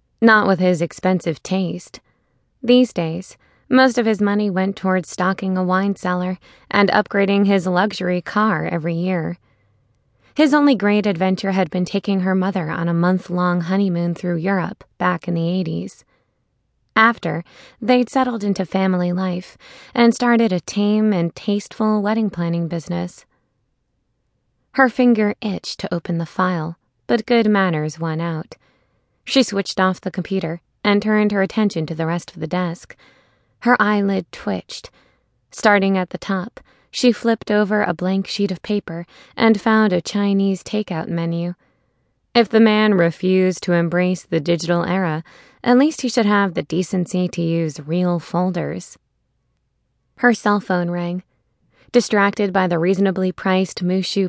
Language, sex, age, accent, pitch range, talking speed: English, female, 20-39, American, 175-210 Hz, 150 wpm